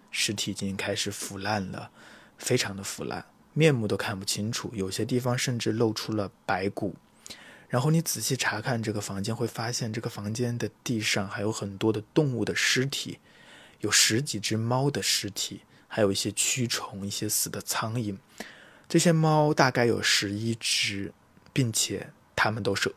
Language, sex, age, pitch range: Chinese, male, 20-39, 100-125 Hz